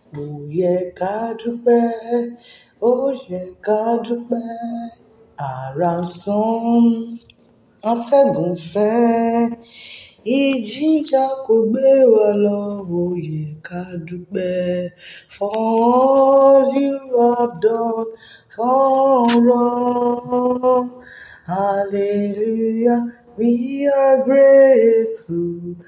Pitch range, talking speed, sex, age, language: 185-250 Hz, 40 wpm, female, 20-39, English